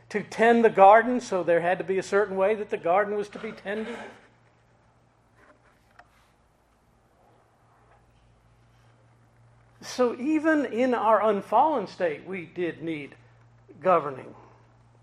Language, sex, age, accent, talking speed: English, male, 50-69, American, 115 wpm